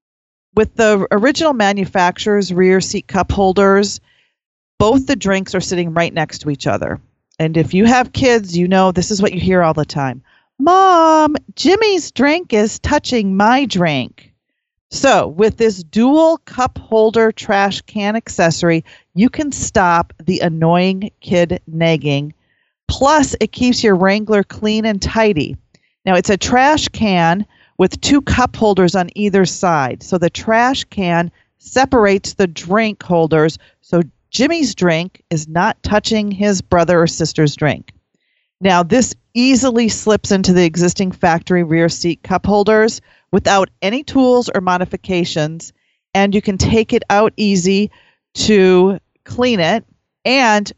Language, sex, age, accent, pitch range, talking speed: English, female, 40-59, American, 175-220 Hz, 145 wpm